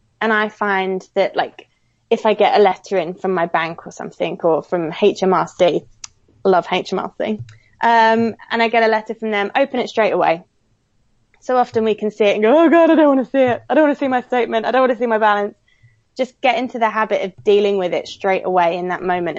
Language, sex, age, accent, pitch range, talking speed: English, female, 20-39, British, 180-220 Hz, 240 wpm